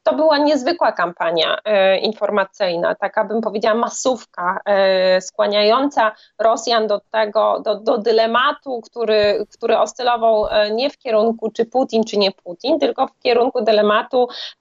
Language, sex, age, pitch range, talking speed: Polish, female, 20-39, 205-235 Hz, 125 wpm